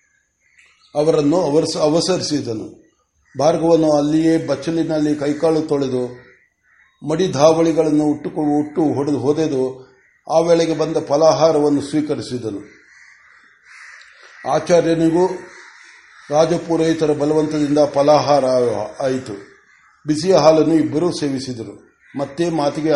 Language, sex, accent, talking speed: Kannada, male, native, 65 wpm